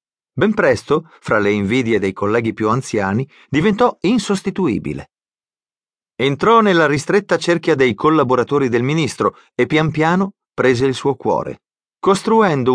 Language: Italian